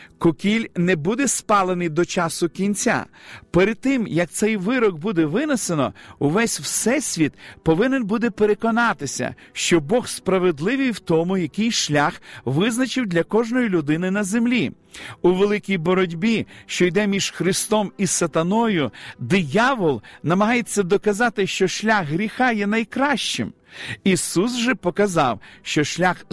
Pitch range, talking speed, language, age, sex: 170-215 Hz, 125 wpm, Ukrainian, 50-69, male